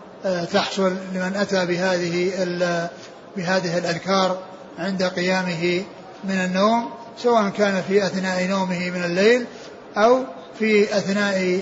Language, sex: Arabic, male